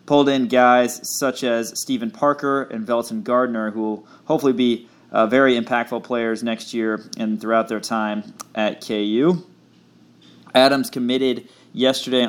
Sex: male